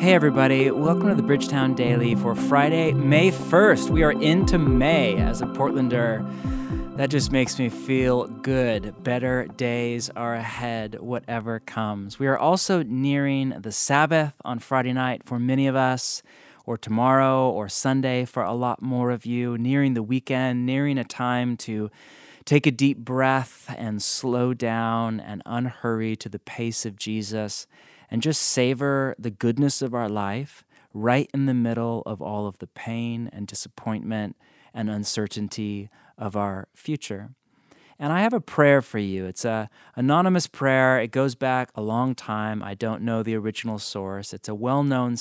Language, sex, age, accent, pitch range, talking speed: English, male, 30-49, American, 105-130 Hz, 165 wpm